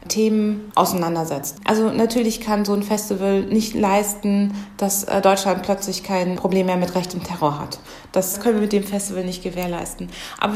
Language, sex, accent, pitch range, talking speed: German, female, German, 195-225 Hz, 170 wpm